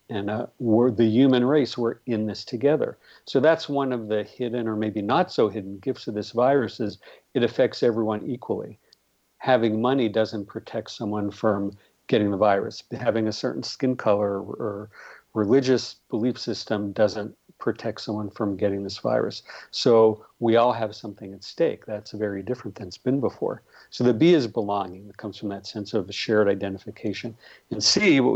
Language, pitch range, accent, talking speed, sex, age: English, 105-120 Hz, American, 180 wpm, male, 50-69